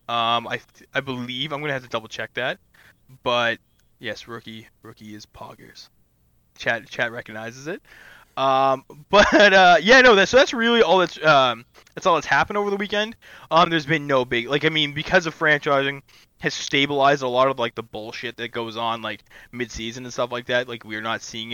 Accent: American